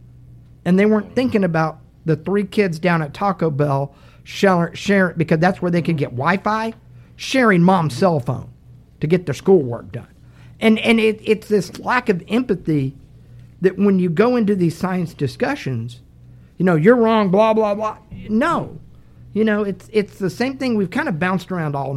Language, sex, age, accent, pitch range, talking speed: English, male, 50-69, American, 120-190 Hz, 185 wpm